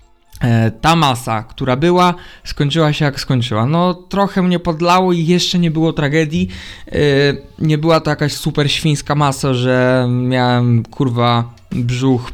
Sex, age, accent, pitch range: male, 20-39, native, 120-150 Hz